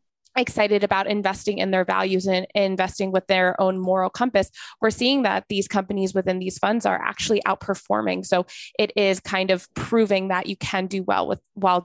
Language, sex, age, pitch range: English, female, 20-39, 180-200 Hz